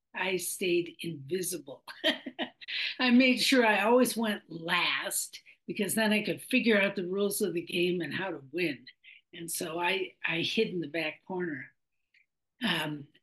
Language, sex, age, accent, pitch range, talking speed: English, female, 60-79, American, 175-255 Hz, 160 wpm